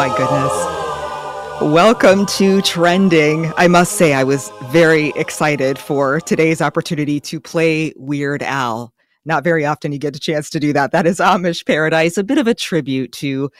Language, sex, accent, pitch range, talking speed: English, female, American, 130-165 Hz, 170 wpm